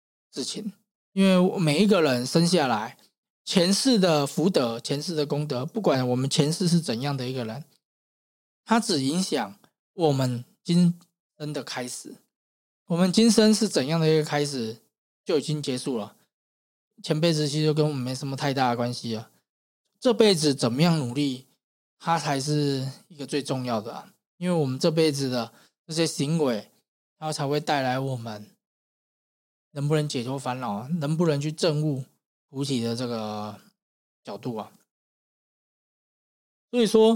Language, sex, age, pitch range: Chinese, male, 20-39, 130-170 Hz